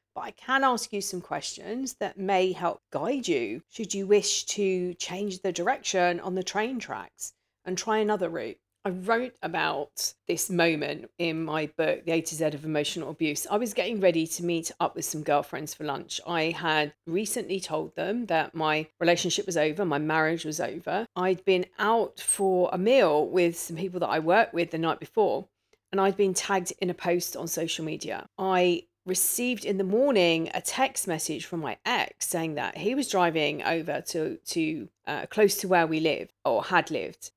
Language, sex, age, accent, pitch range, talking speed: English, female, 40-59, British, 165-205 Hz, 195 wpm